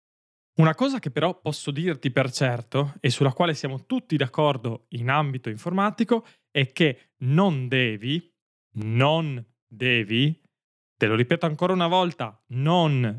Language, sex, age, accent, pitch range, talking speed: Italian, male, 20-39, native, 130-180 Hz, 135 wpm